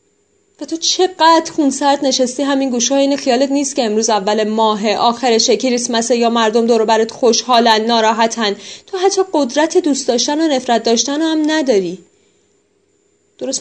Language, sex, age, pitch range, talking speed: Persian, female, 30-49, 215-305 Hz, 160 wpm